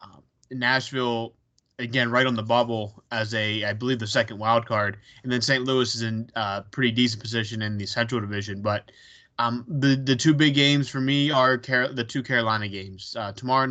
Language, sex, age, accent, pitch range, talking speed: English, male, 20-39, American, 115-135 Hz, 195 wpm